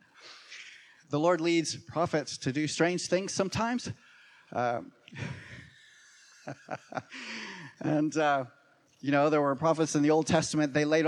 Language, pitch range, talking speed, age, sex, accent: English, 140-175 Hz, 125 wpm, 30-49, male, American